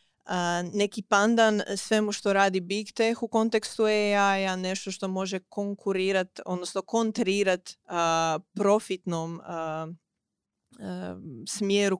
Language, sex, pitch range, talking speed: Croatian, female, 170-195 Hz, 110 wpm